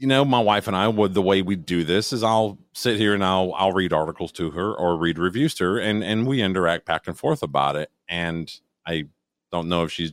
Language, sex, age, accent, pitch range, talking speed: English, male, 40-59, American, 85-130 Hz, 255 wpm